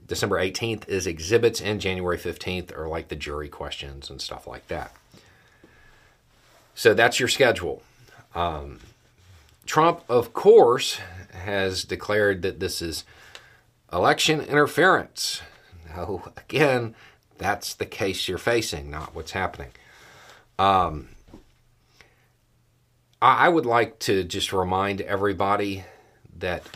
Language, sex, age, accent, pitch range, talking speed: English, male, 40-59, American, 85-115 Hz, 110 wpm